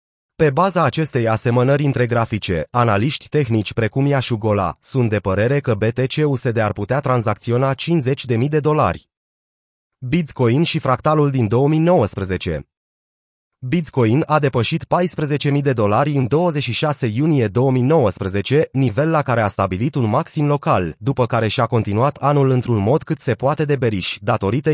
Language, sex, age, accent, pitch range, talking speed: Romanian, male, 30-49, native, 115-150 Hz, 140 wpm